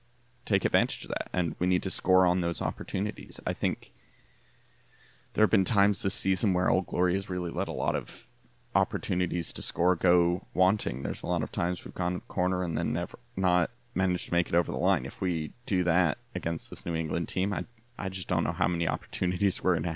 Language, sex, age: English, male, 20-39